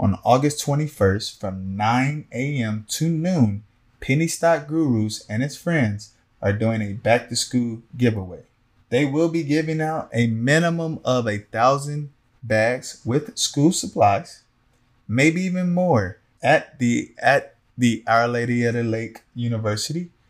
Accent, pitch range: American, 115-140 Hz